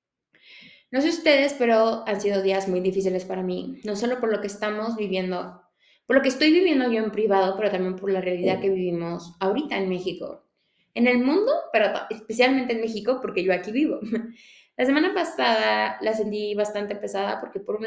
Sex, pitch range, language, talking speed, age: female, 190-245 Hz, Spanish, 190 wpm, 20-39